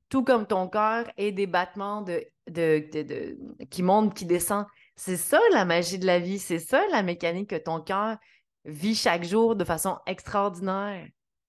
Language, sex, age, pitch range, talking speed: French, female, 30-49, 165-225 Hz, 185 wpm